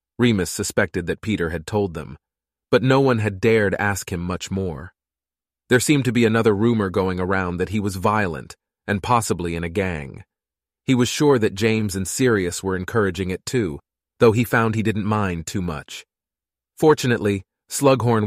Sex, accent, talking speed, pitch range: male, American, 175 wpm, 95-120 Hz